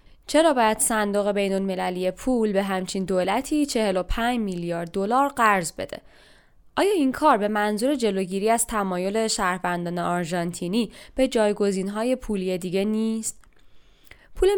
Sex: female